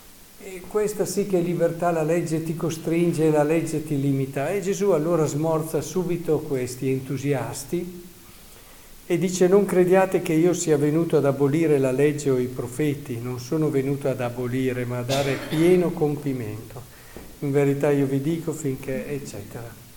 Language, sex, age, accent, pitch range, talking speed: Italian, male, 50-69, native, 135-170 Hz, 155 wpm